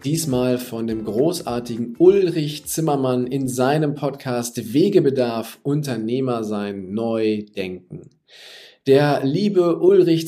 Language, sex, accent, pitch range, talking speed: German, male, German, 110-140 Hz, 100 wpm